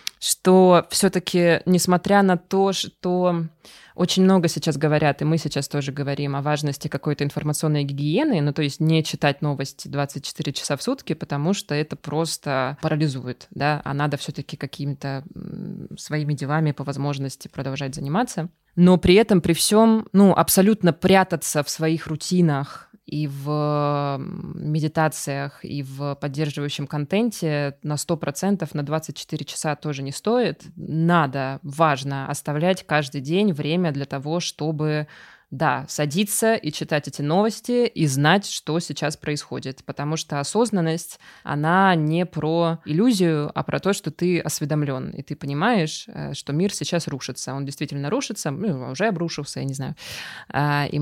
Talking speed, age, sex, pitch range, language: 140 wpm, 20-39, female, 145-180 Hz, Russian